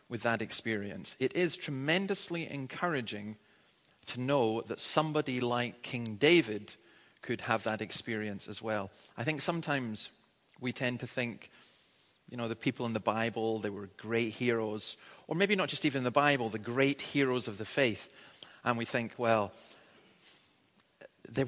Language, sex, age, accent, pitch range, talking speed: English, male, 30-49, British, 110-135 Hz, 155 wpm